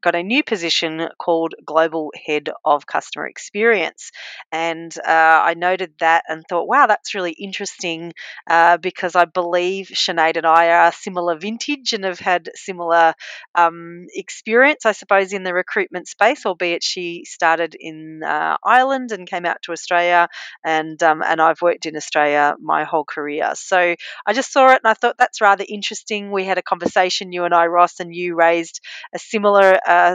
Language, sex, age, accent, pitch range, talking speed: English, female, 30-49, Australian, 165-195 Hz, 175 wpm